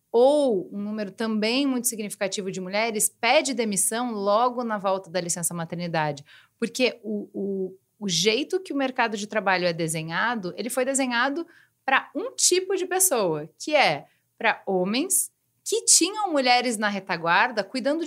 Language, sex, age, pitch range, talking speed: Portuguese, female, 30-49, 185-280 Hz, 150 wpm